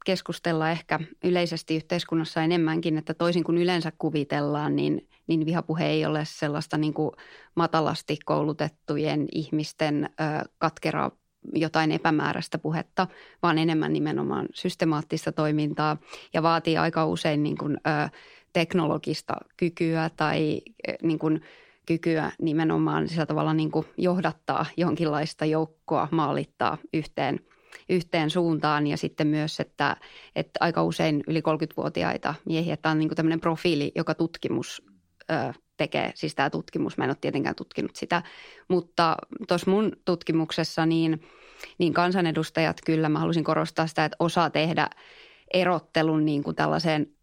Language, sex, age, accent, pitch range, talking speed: Finnish, female, 20-39, native, 155-170 Hz, 125 wpm